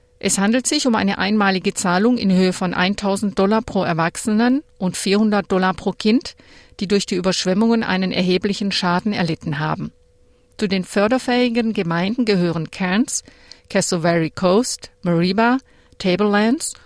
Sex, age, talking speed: female, 50-69, 135 wpm